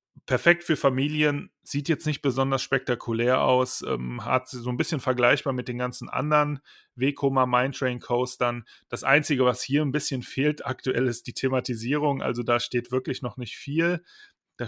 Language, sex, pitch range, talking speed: German, male, 125-145 Hz, 155 wpm